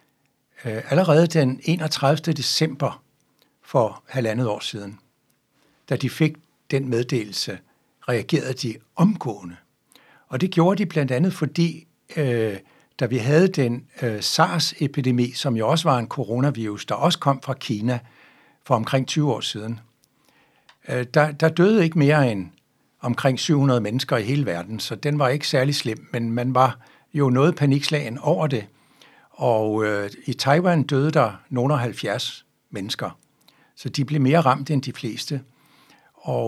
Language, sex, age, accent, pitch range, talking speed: Danish, male, 60-79, native, 120-155 Hz, 145 wpm